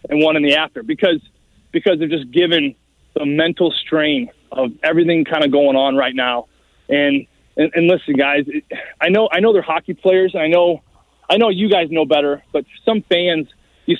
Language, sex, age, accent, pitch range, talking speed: English, male, 20-39, American, 155-225 Hz, 195 wpm